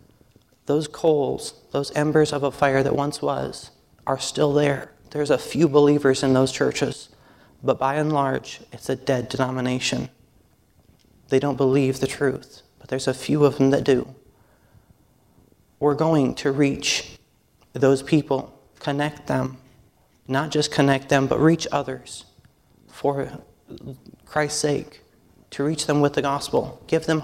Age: 30-49